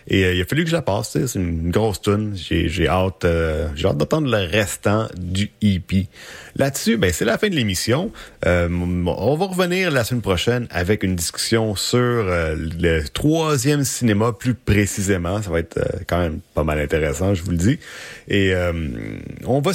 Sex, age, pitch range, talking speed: male, 30-49, 90-125 Hz, 195 wpm